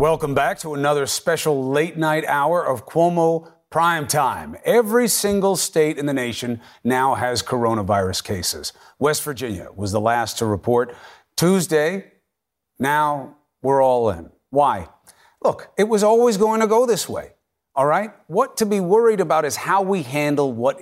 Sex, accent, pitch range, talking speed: male, American, 140-205 Hz, 160 wpm